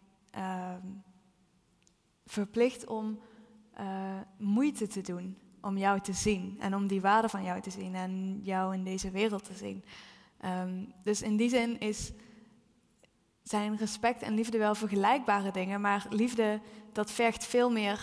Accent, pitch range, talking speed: Dutch, 195-225 Hz, 140 wpm